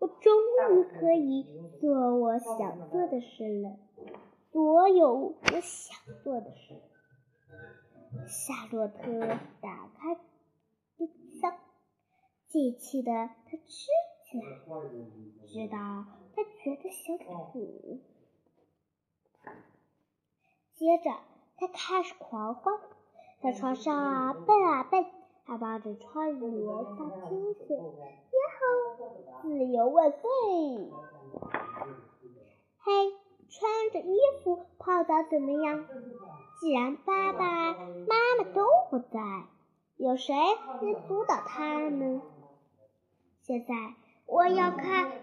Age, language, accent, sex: 10-29, Chinese, native, male